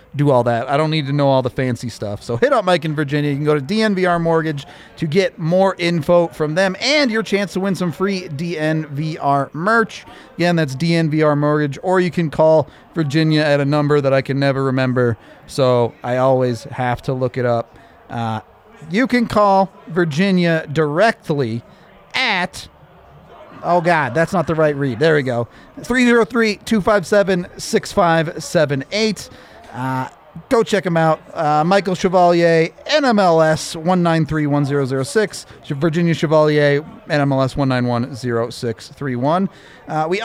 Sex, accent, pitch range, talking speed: male, American, 140-190 Hz, 145 wpm